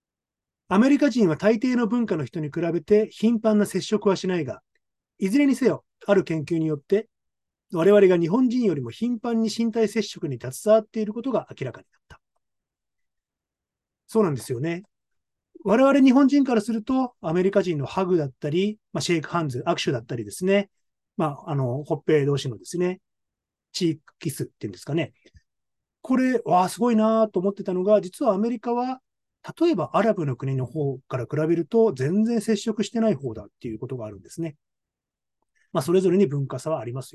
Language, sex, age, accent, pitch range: Japanese, male, 30-49, native, 145-220 Hz